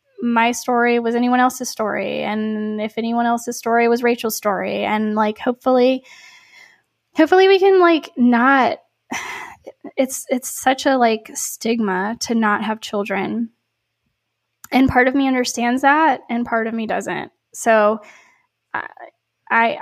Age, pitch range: 10-29, 225-260 Hz